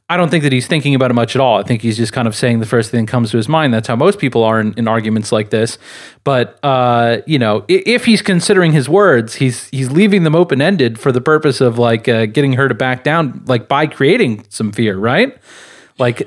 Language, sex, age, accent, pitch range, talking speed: English, male, 30-49, American, 120-175 Hz, 250 wpm